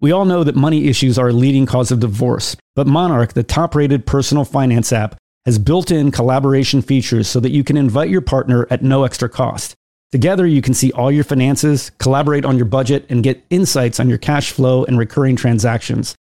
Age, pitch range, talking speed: 40-59, 125-150 Hz, 210 wpm